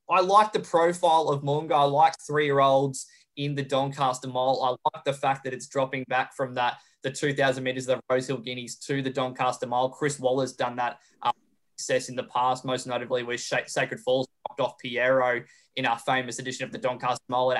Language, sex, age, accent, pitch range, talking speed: English, male, 20-39, Australian, 130-140 Hz, 210 wpm